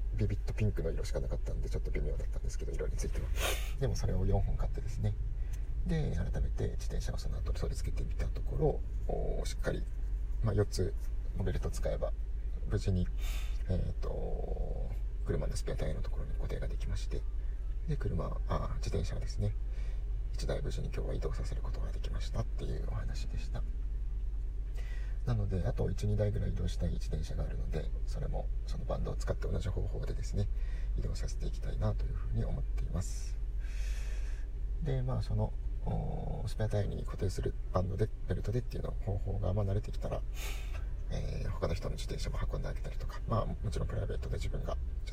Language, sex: Japanese, male